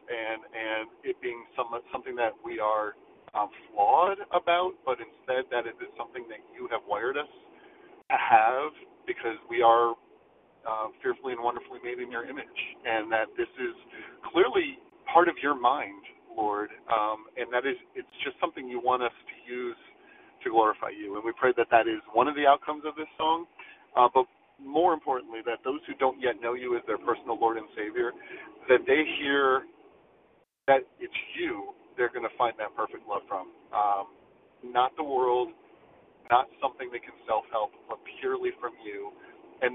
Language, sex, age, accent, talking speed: English, male, 40-59, American, 180 wpm